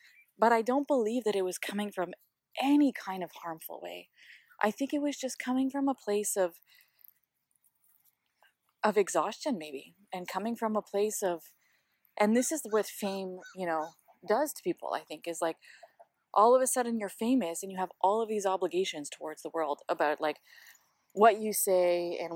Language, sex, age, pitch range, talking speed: English, female, 20-39, 175-235 Hz, 185 wpm